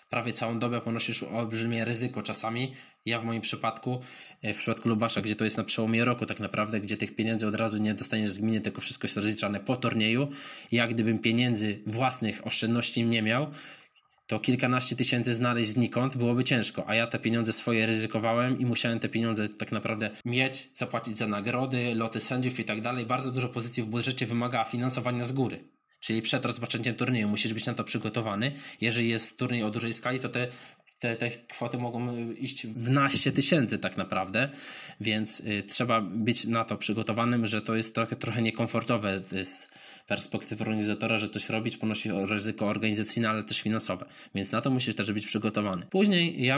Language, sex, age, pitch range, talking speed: Polish, male, 20-39, 110-120 Hz, 185 wpm